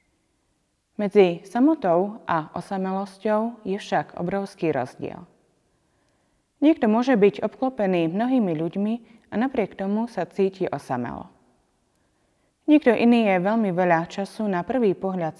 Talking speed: 115 wpm